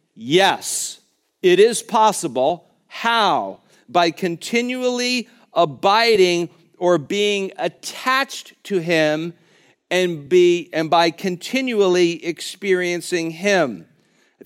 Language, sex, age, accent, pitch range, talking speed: English, male, 50-69, American, 155-205 Hz, 85 wpm